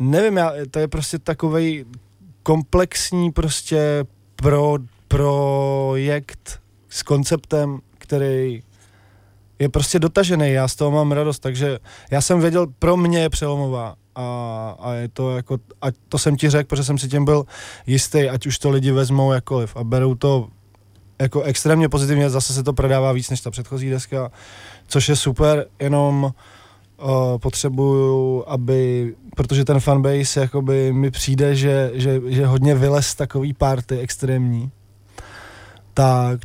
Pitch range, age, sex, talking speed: 125-145 Hz, 20-39, male, 145 wpm